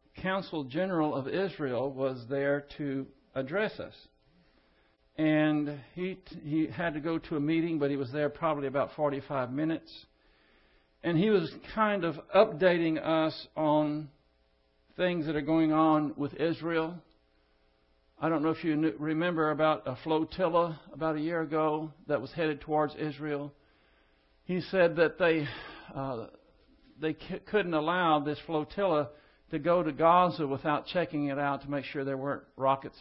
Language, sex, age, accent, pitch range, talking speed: English, male, 60-79, American, 135-160 Hz, 160 wpm